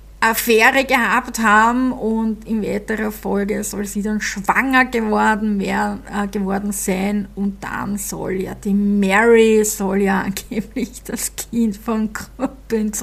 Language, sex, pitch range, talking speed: German, female, 205-230 Hz, 135 wpm